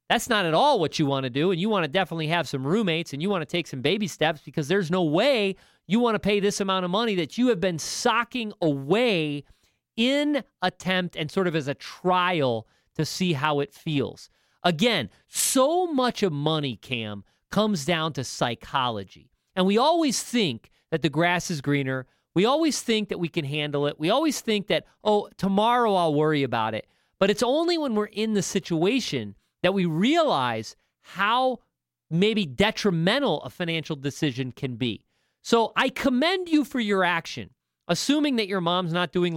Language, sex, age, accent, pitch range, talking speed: English, male, 40-59, American, 150-215 Hz, 190 wpm